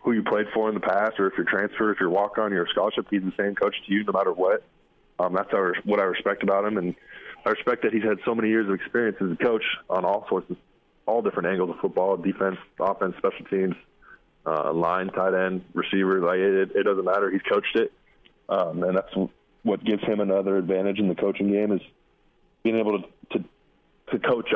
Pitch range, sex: 95-105 Hz, male